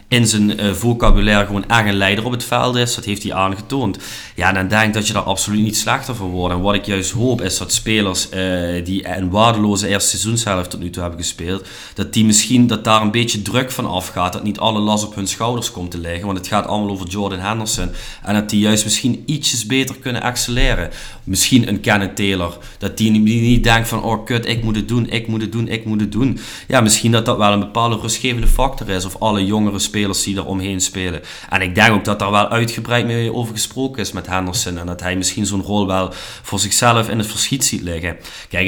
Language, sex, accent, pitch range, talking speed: Dutch, male, Dutch, 95-115 Hz, 240 wpm